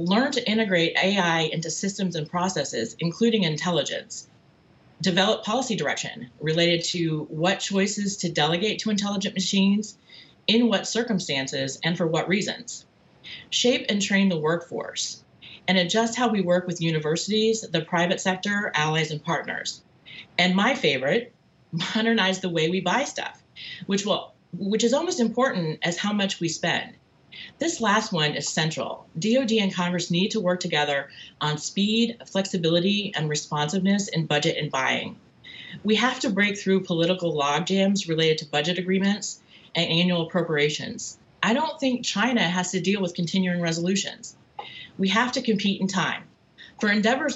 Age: 30-49